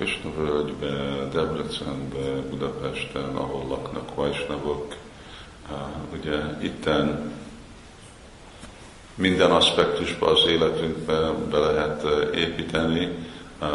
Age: 50-69